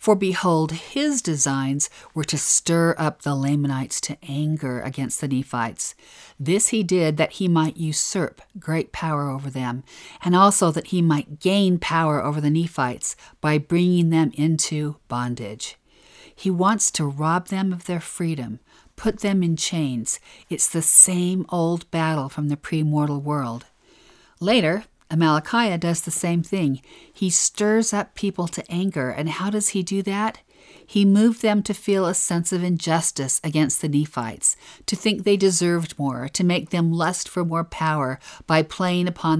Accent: American